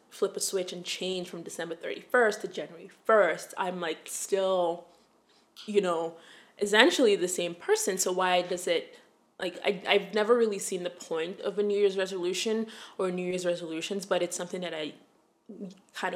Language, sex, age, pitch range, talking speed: English, female, 20-39, 180-220 Hz, 175 wpm